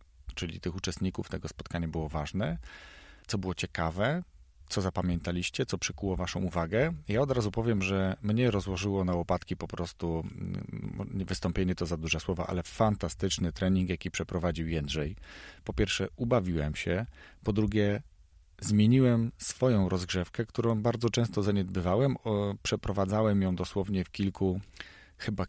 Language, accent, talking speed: Polish, native, 135 wpm